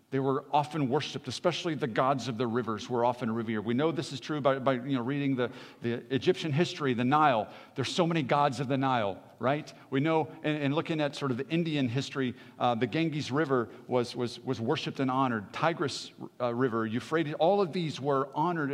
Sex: male